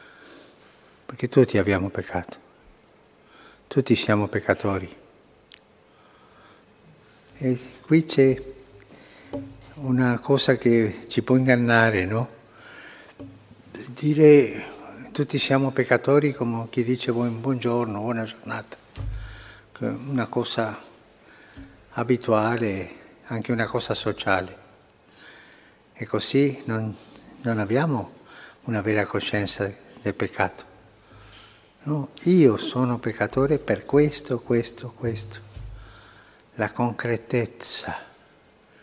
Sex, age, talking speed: male, 60-79, 85 wpm